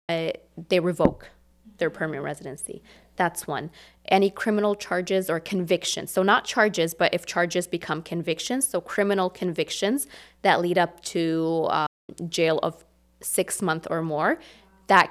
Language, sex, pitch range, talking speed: English, female, 160-195 Hz, 140 wpm